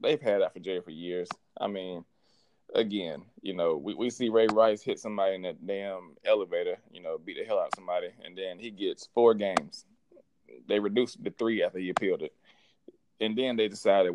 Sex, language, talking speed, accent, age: male, English, 210 wpm, American, 20-39